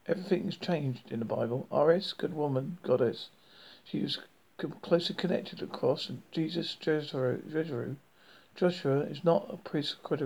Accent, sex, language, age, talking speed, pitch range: British, male, English, 50-69, 145 wpm, 135-165 Hz